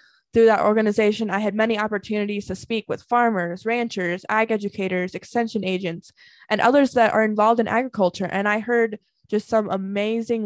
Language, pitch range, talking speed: English, 200-235 Hz, 165 wpm